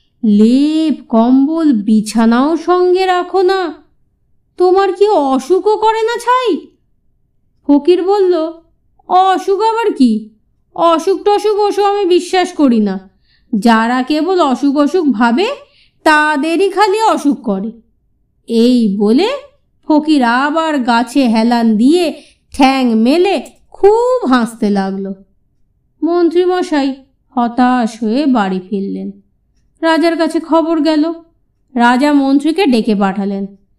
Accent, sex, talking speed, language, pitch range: native, female, 105 wpm, Bengali, 235-330 Hz